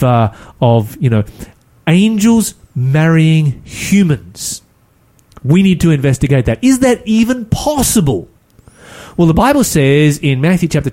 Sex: male